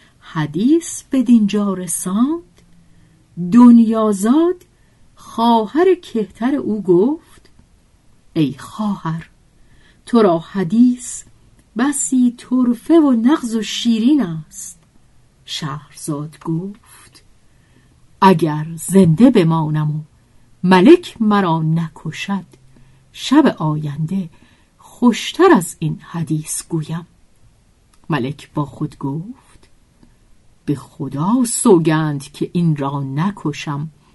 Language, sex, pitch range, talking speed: Persian, female, 145-225 Hz, 85 wpm